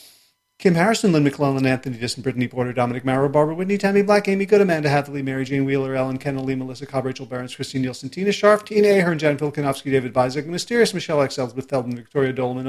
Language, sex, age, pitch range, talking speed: English, male, 40-59, 140-175 Hz, 205 wpm